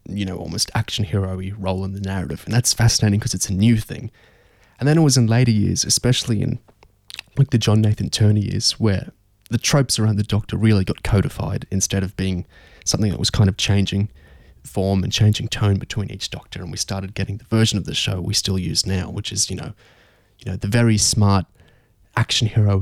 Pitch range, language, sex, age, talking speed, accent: 95-115 Hz, English, male, 20-39, 210 wpm, Australian